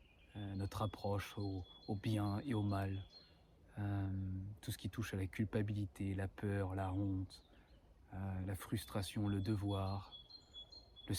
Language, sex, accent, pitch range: French, male, French, 95-105 Hz